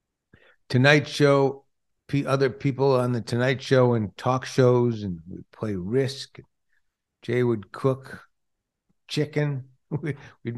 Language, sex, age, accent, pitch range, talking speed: English, male, 60-79, American, 100-135 Hz, 115 wpm